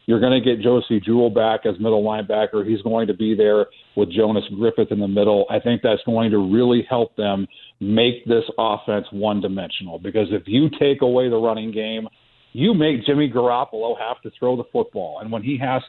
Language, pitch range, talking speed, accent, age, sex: English, 110-130 Hz, 205 wpm, American, 40-59, male